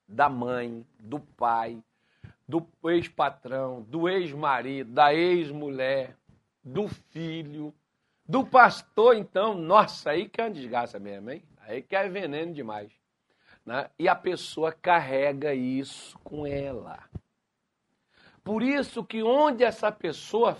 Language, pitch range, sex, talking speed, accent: Portuguese, 135-215 Hz, male, 120 wpm, Brazilian